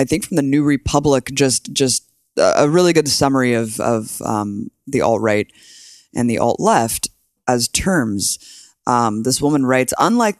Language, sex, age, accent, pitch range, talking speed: English, female, 20-39, American, 125-170 Hz, 165 wpm